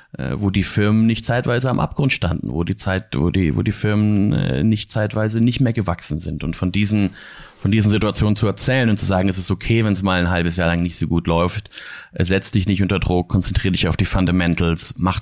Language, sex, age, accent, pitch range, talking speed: German, male, 30-49, German, 85-100 Hz, 230 wpm